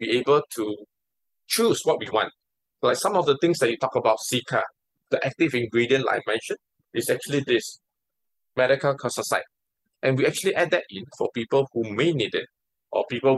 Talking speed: 185 wpm